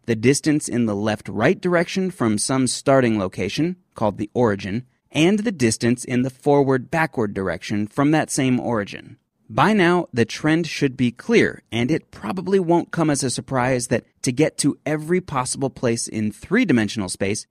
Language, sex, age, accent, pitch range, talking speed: English, male, 30-49, American, 110-155 Hz, 170 wpm